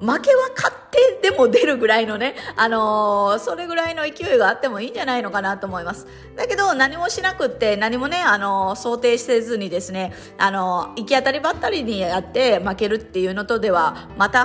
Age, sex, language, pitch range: 20-39, female, Japanese, 195-265 Hz